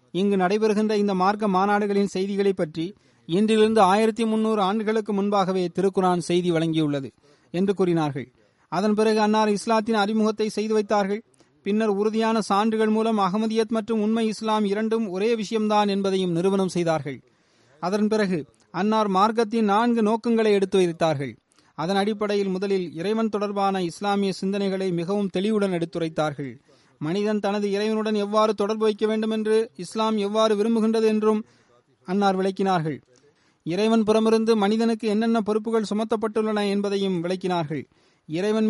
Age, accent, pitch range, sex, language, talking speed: 30-49, native, 185-220 Hz, male, Tamil, 120 wpm